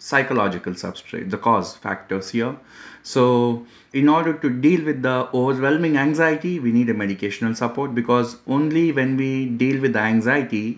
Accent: Indian